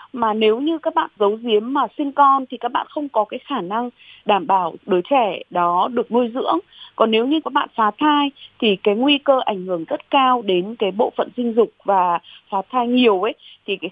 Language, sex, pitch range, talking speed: Vietnamese, female, 215-290 Hz, 235 wpm